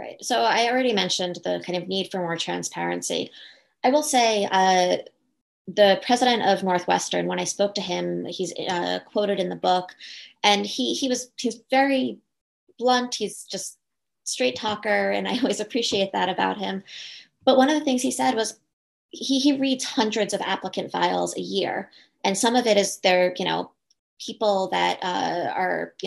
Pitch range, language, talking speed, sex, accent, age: 185-245 Hz, English, 180 wpm, female, American, 20-39